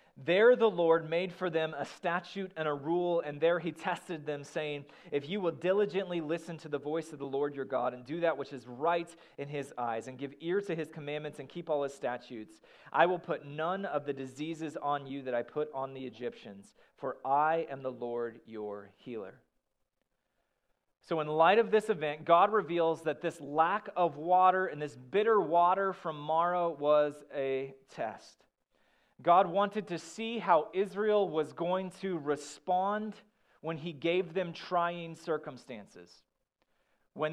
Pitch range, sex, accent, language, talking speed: 150-190 Hz, male, American, English, 180 wpm